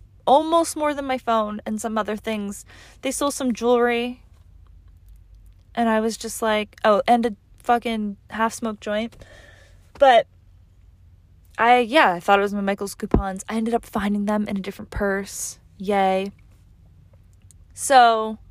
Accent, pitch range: American, 185-250 Hz